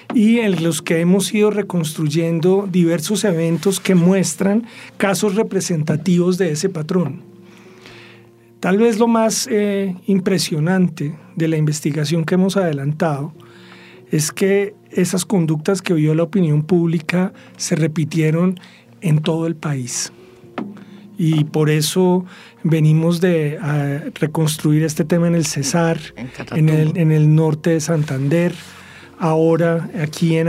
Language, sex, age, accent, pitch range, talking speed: English, male, 40-59, Colombian, 160-195 Hz, 130 wpm